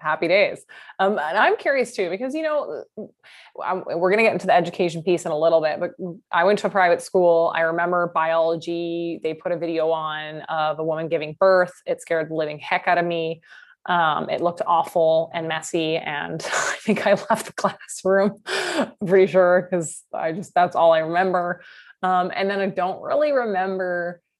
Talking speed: 200 wpm